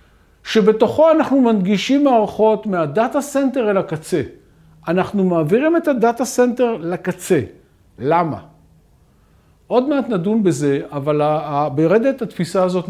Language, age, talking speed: Hebrew, 50-69, 105 wpm